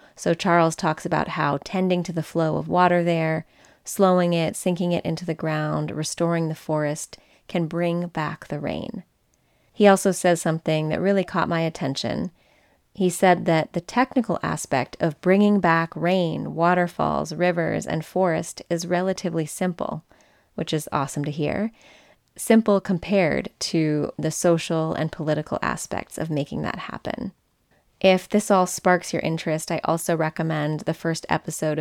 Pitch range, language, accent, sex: 160-180 Hz, English, American, female